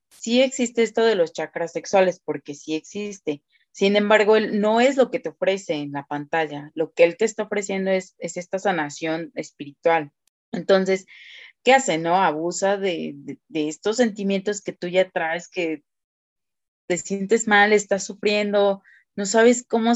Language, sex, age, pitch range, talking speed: Spanish, female, 30-49, 165-210 Hz, 170 wpm